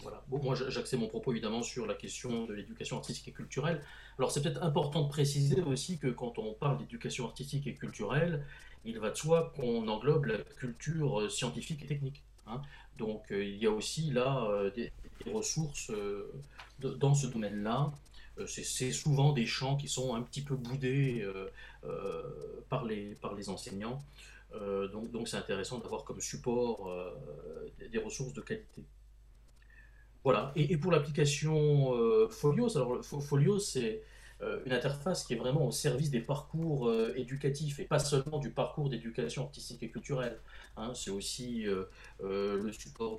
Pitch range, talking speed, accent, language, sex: 115-150 Hz, 155 wpm, French, French, male